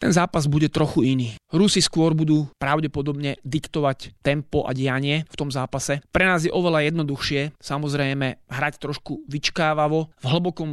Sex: male